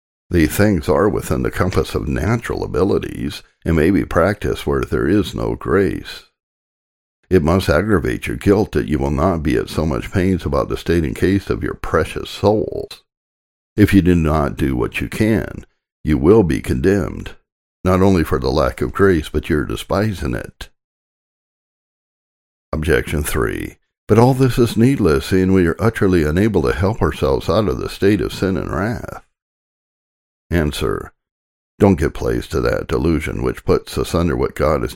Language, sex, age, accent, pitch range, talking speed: English, male, 60-79, American, 70-95 Hz, 170 wpm